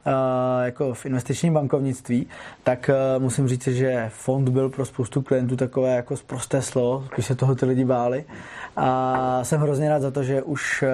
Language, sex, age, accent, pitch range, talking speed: Czech, male, 20-39, native, 120-130 Hz, 175 wpm